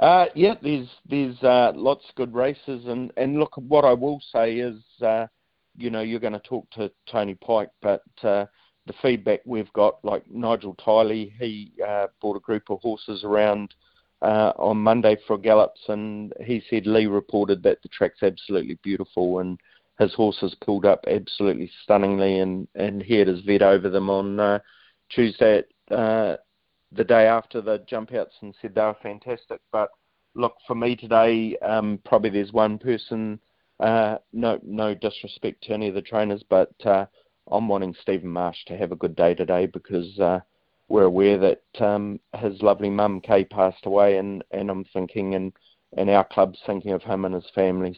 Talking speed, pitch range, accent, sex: 185 wpm, 100-115 Hz, Australian, male